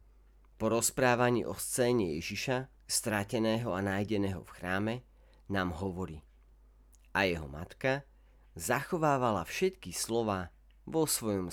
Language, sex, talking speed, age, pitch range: Slovak, male, 105 wpm, 40-59, 75-115 Hz